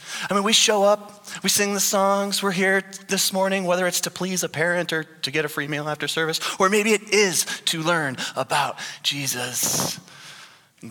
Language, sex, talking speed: English, male, 200 wpm